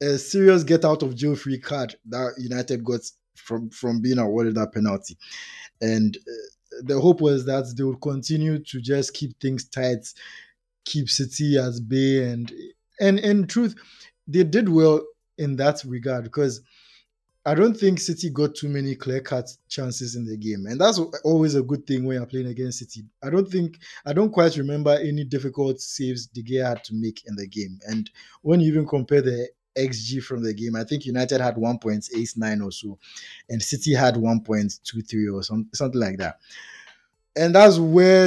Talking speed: 195 wpm